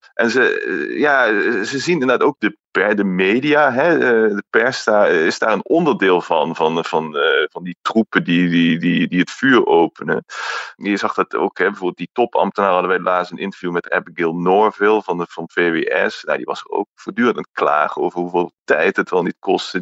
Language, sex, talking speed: Dutch, male, 200 wpm